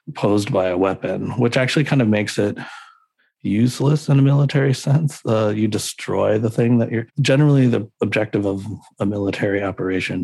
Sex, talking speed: male, 170 wpm